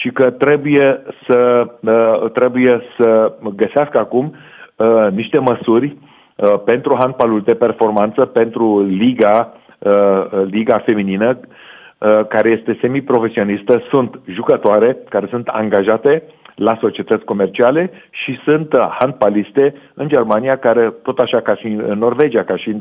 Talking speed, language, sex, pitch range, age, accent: 115 wpm, Romanian, male, 105-140 Hz, 40-59, native